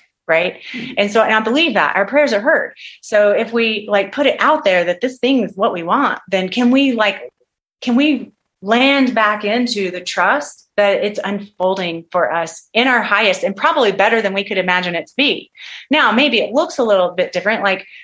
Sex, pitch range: female, 185-255 Hz